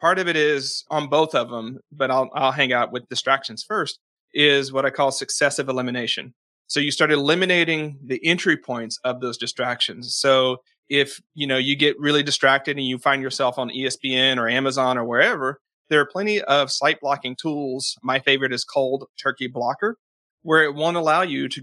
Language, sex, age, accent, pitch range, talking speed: English, male, 30-49, American, 125-145 Hz, 190 wpm